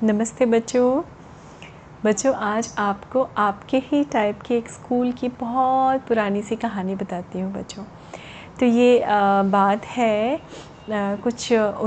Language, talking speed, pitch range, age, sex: Hindi, 120 wpm, 210-255 Hz, 30-49, female